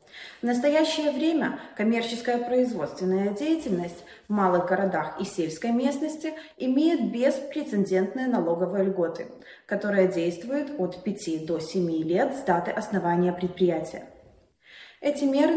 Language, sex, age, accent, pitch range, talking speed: Russian, female, 20-39, native, 180-275 Hz, 110 wpm